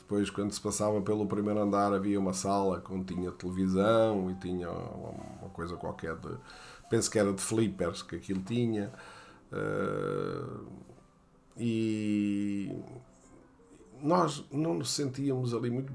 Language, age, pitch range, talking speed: Portuguese, 50-69, 95-130 Hz, 125 wpm